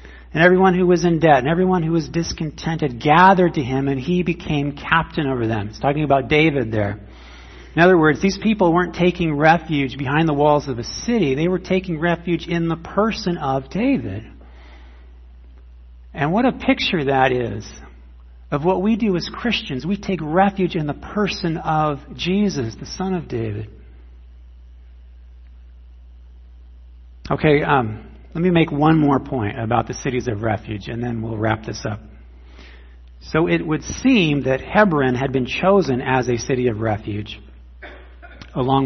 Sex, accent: male, American